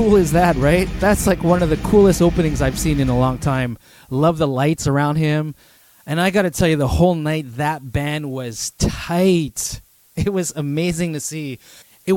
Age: 20-39